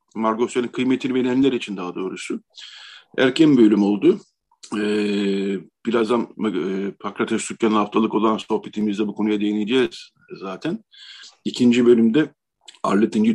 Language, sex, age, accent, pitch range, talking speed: Turkish, male, 50-69, native, 100-125 Hz, 110 wpm